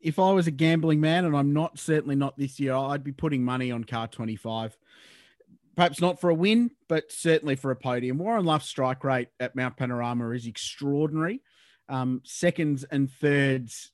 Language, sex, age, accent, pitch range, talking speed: English, male, 30-49, Australian, 125-155 Hz, 185 wpm